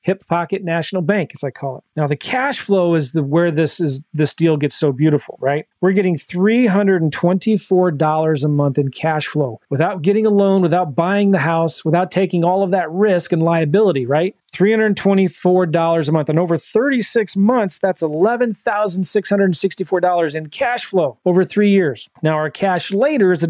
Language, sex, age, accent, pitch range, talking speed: English, male, 40-59, American, 160-205 Hz, 200 wpm